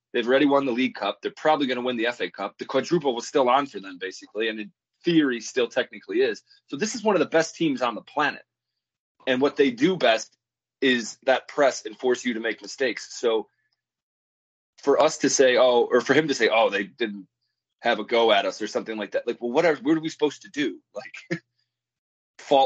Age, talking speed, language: 20-39, 235 wpm, English